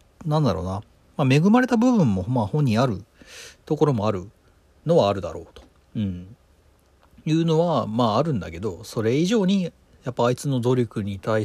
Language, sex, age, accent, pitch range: Japanese, male, 40-59, native, 95-145 Hz